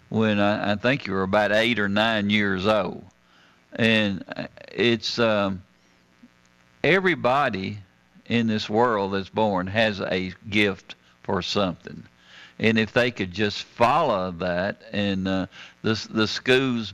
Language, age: English, 50-69